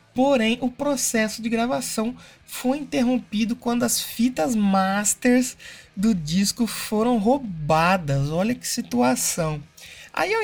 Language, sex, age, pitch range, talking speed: Portuguese, male, 20-39, 180-235 Hz, 115 wpm